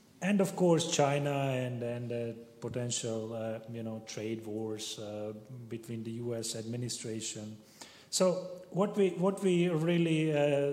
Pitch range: 115-140 Hz